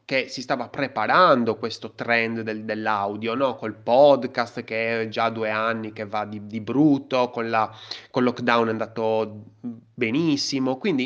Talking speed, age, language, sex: 150 wpm, 30-49, Italian, male